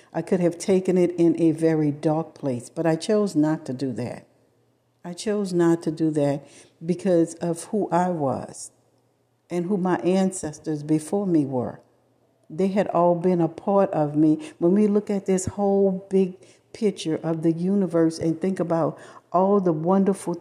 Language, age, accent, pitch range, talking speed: English, 60-79, American, 165-205 Hz, 175 wpm